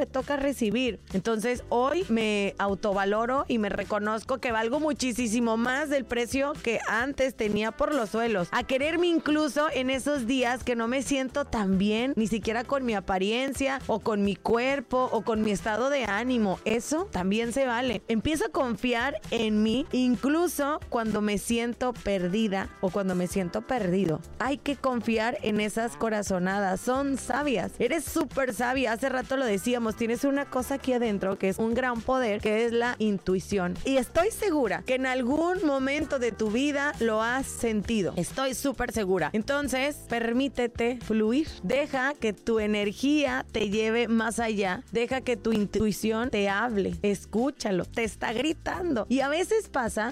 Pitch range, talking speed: 215-270 Hz, 165 wpm